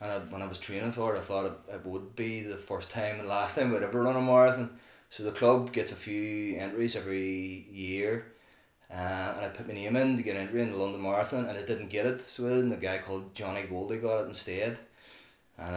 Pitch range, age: 95-120 Hz, 20-39